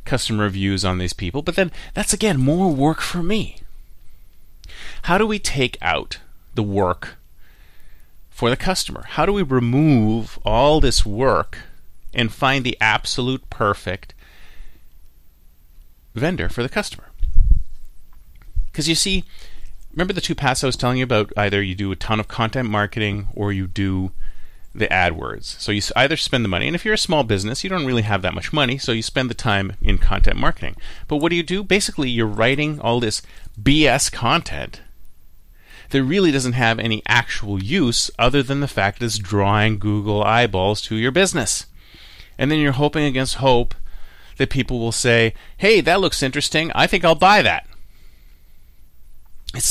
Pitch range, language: 95-140 Hz, English